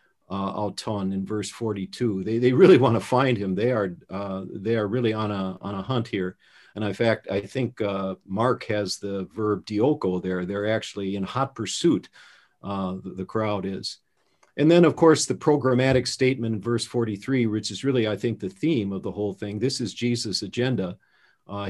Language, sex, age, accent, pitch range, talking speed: English, male, 50-69, American, 100-130 Hz, 195 wpm